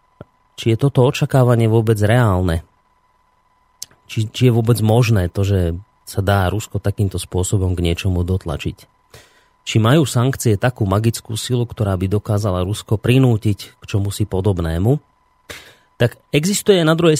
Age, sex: 30-49, male